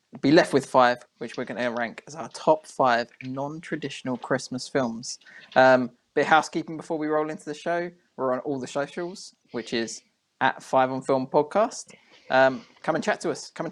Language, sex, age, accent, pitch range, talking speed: English, male, 20-39, British, 130-165 Hz, 200 wpm